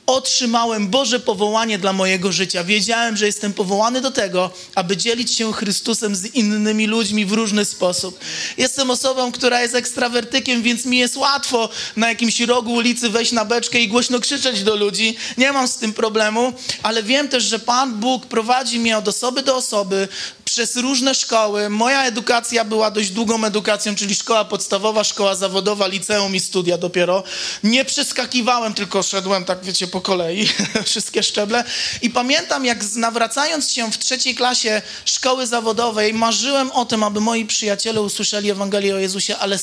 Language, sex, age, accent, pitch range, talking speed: Polish, male, 30-49, native, 205-240 Hz, 165 wpm